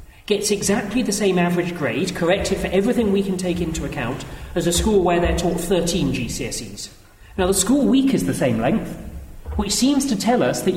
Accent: British